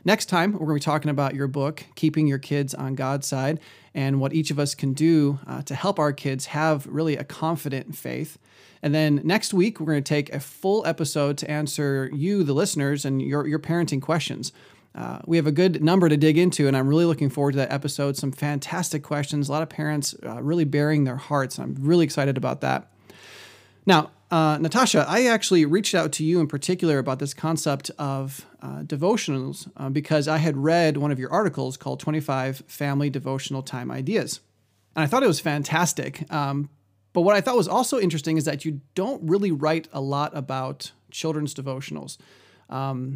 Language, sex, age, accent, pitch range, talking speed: English, male, 30-49, American, 140-160 Hz, 205 wpm